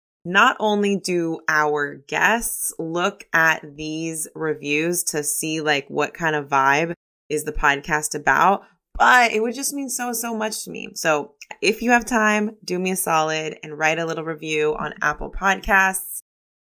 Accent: American